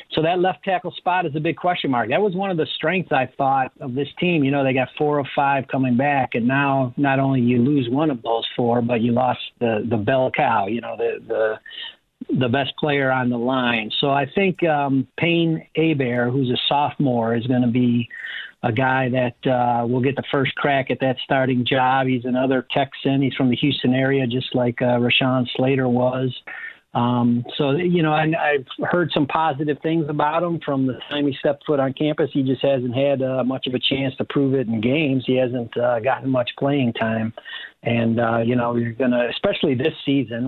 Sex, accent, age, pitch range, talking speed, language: male, American, 50-69, 125-145 Hz, 220 wpm, English